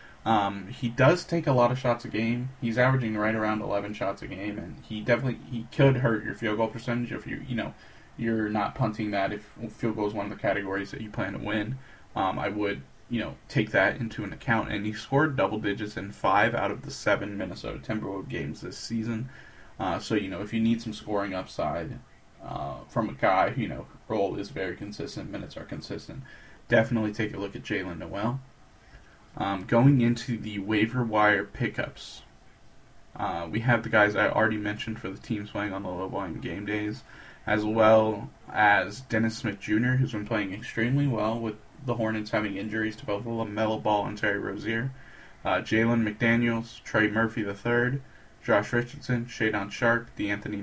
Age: 10-29